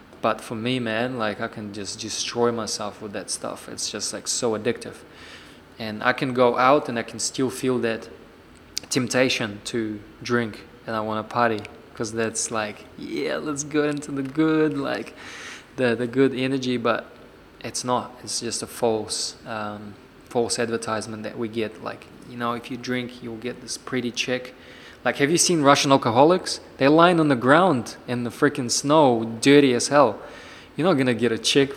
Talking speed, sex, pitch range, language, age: 190 wpm, male, 115-130 Hz, English, 20-39